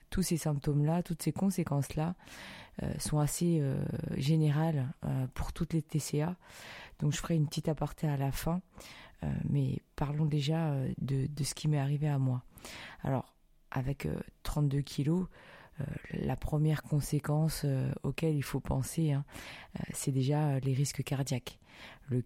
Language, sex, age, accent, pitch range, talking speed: French, female, 20-39, French, 135-155 Hz, 165 wpm